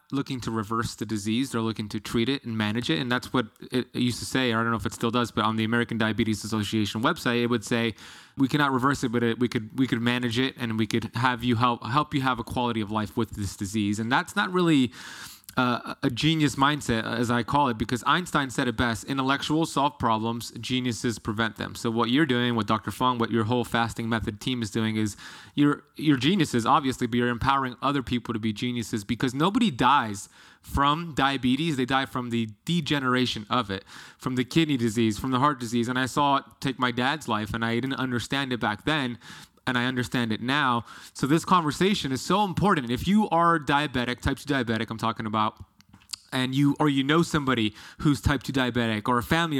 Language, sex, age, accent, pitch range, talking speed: English, male, 20-39, American, 115-140 Hz, 225 wpm